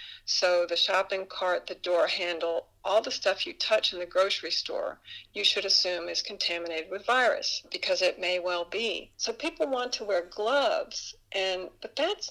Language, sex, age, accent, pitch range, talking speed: English, female, 50-69, American, 185-240 Hz, 180 wpm